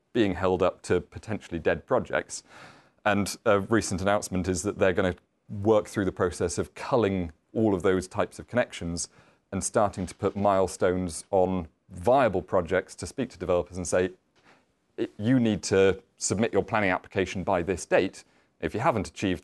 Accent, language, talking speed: British, English, 175 wpm